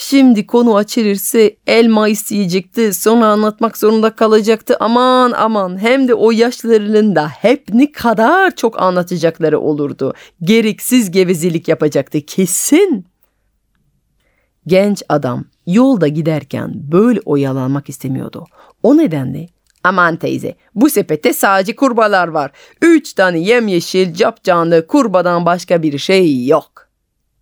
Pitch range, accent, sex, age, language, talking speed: 155-225 Hz, native, female, 30-49, Turkish, 110 wpm